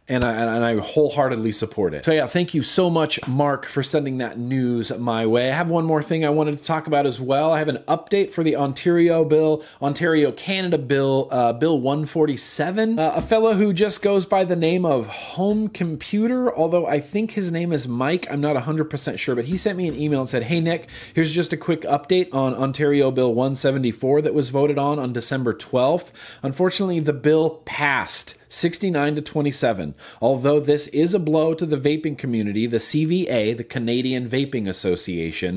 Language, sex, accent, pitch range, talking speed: English, male, American, 125-165 Hz, 195 wpm